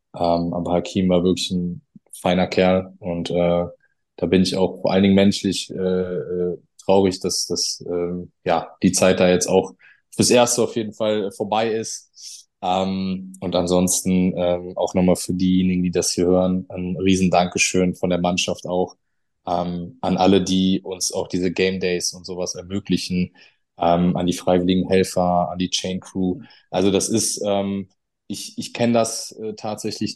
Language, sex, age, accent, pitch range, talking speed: German, male, 20-39, German, 90-95 Hz, 170 wpm